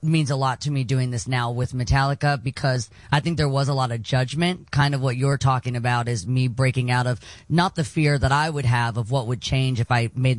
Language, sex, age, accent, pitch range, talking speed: English, female, 30-49, American, 120-140 Hz, 255 wpm